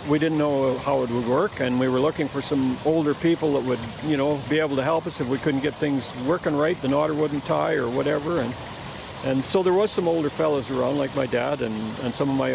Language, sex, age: English, male, 50-69